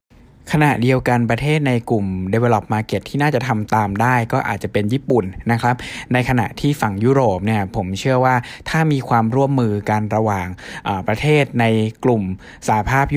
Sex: male